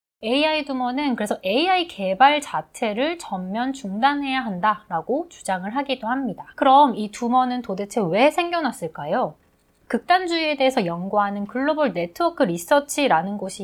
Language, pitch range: Korean, 195-290 Hz